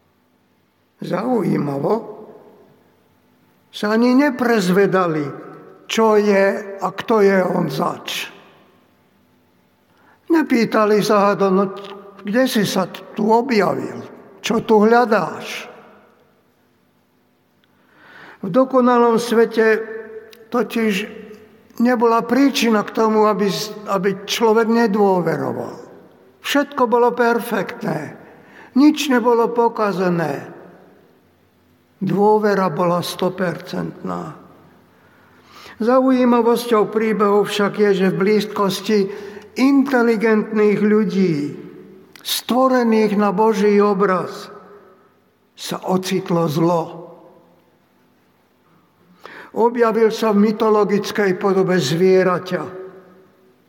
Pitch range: 185-225 Hz